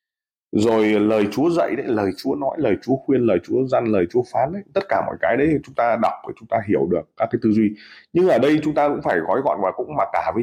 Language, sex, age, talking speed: Vietnamese, male, 20-39, 280 wpm